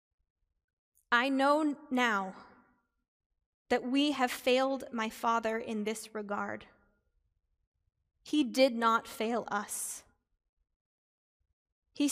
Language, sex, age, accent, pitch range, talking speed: English, female, 20-39, American, 215-260 Hz, 90 wpm